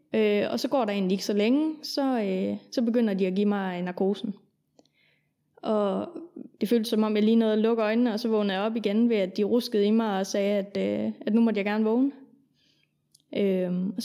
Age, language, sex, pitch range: 20-39, Danish, female, 200-240 Hz